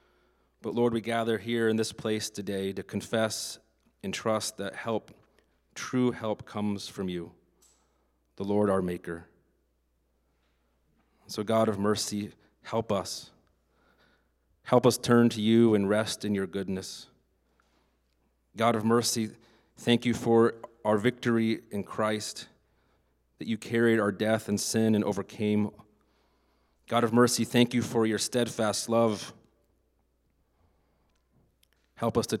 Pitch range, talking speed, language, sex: 90-115 Hz, 130 wpm, English, male